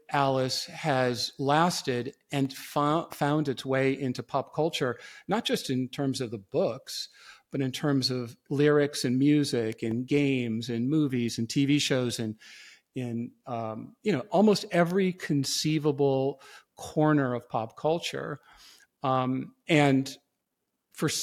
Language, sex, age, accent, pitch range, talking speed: English, male, 50-69, American, 130-155 Hz, 135 wpm